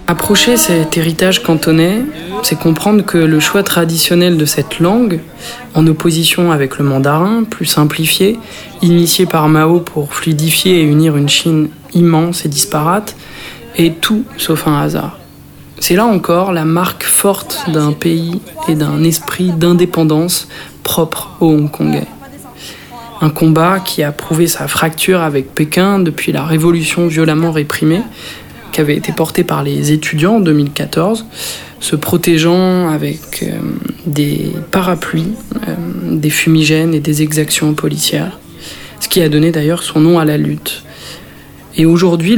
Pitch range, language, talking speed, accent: 155-175 Hz, French, 140 wpm, French